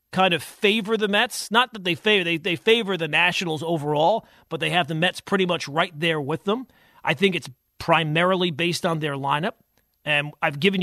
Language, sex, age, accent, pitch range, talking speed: English, male, 40-59, American, 160-195 Hz, 205 wpm